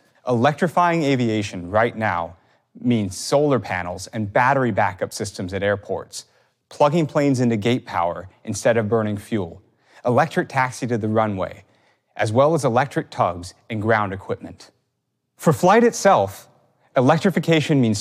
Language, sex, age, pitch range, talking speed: Arabic, male, 30-49, 110-155 Hz, 135 wpm